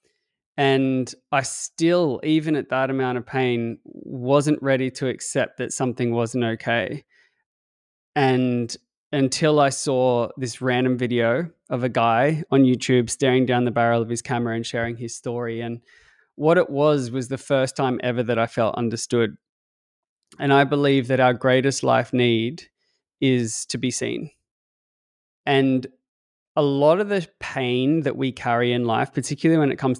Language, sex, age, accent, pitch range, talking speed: English, male, 20-39, Australian, 120-140 Hz, 160 wpm